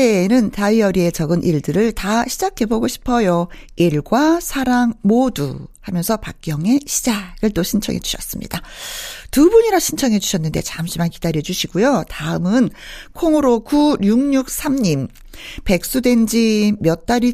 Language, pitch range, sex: Korean, 180-265 Hz, female